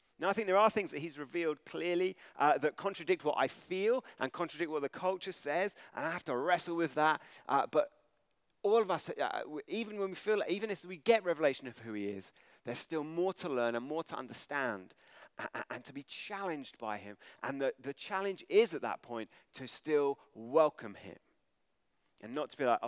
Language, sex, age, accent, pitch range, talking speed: English, male, 30-49, British, 135-190 Hz, 210 wpm